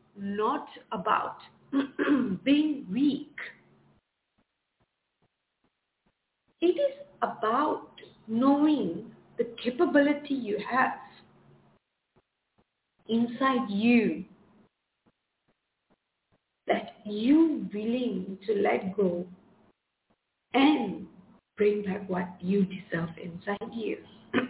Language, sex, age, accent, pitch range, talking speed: English, female, 50-69, Indian, 195-265 Hz, 70 wpm